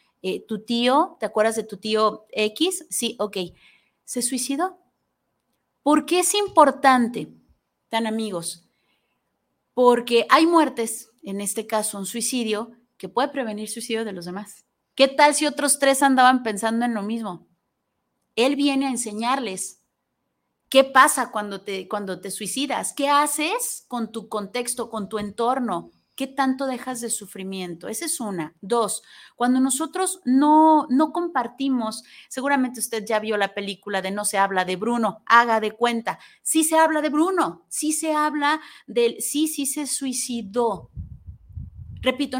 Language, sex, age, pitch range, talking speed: Spanish, female, 30-49, 215-285 Hz, 150 wpm